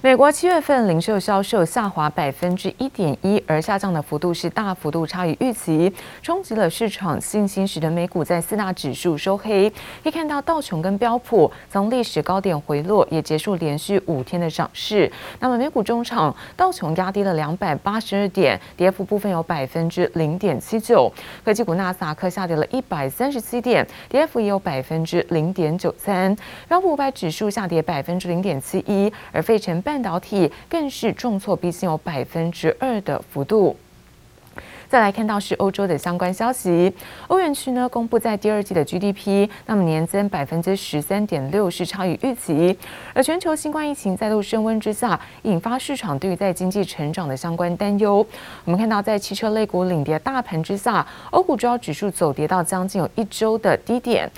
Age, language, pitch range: 30-49, Chinese, 165-220 Hz